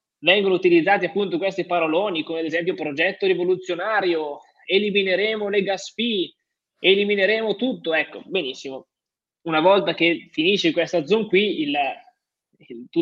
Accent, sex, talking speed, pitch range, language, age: native, male, 125 wpm, 160-205 Hz, Italian, 20-39